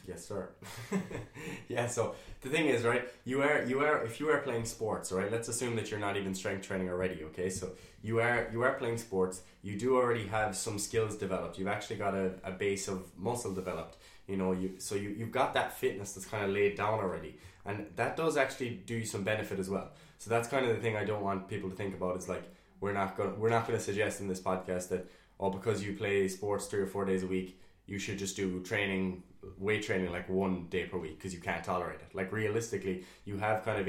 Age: 20-39